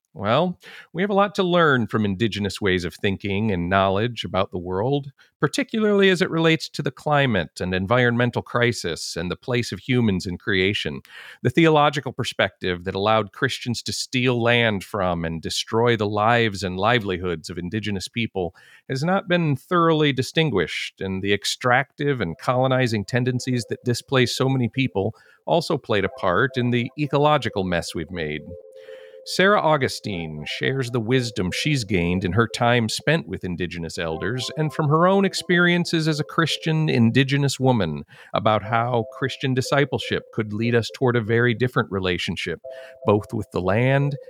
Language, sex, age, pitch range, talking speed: English, male, 40-59, 105-155 Hz, 160 wpm